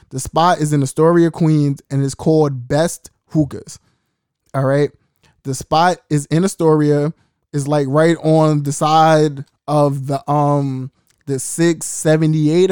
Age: 20-39